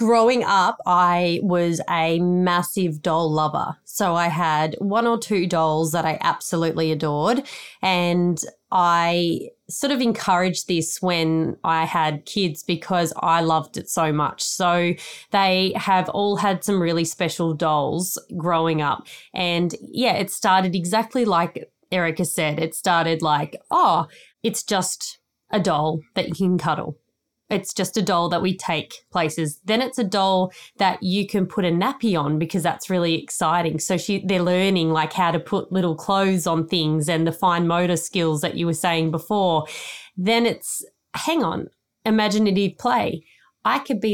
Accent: Australian